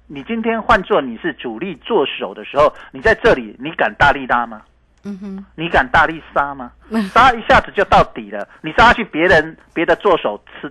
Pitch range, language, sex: 155-240 Hz, Chinese, male